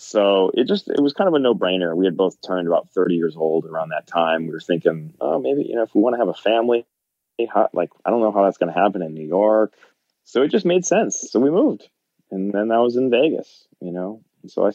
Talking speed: 265 wpm